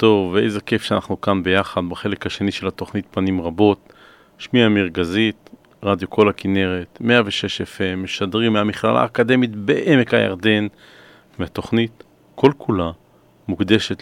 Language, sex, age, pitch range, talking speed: Hebrew, male, 40-59, 95-115 Hz, 120 wpm